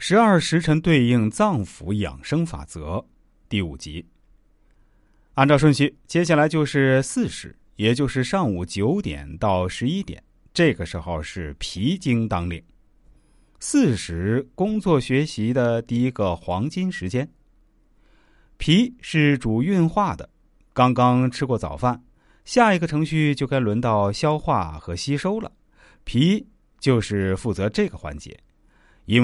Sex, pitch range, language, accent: male, 90-145 Hz, Chinese, native